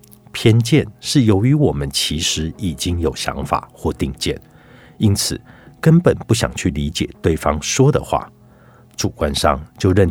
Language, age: Chinese, 60-79